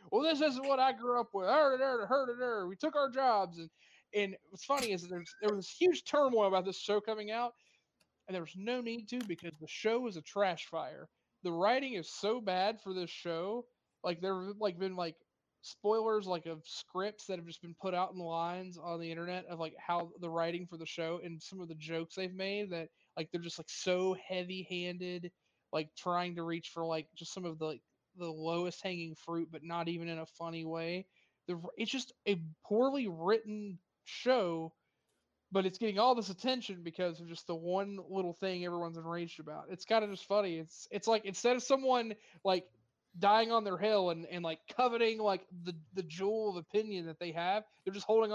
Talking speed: 220 wpm